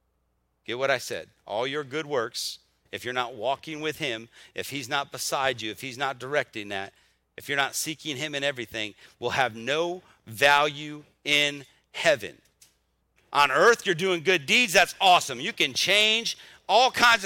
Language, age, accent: English, 40-59, American